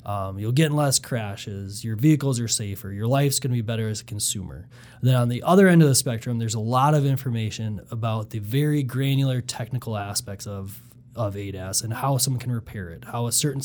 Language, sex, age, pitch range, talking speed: English, male, 20-39, 110-130 Hz, 220 wpm